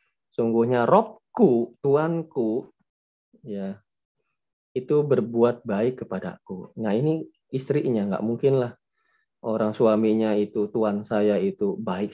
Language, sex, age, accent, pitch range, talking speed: Indonesian, male, 20-39, native, 110-145 Hz, 100 wpm